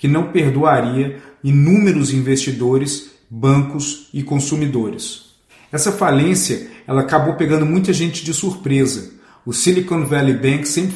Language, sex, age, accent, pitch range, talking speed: Portuguese, male, 40-59, Brazilian, 130-155 Hz, 115 wpm